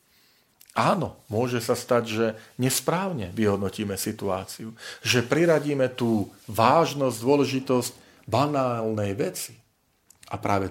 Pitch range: 105-140 Hz